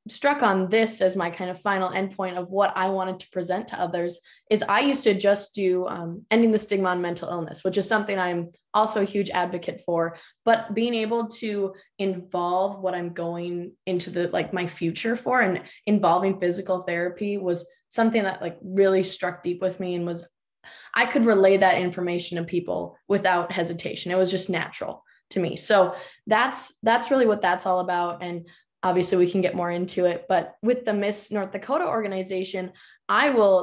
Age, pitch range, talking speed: 20-39, 180-220 Hz, 195 wpm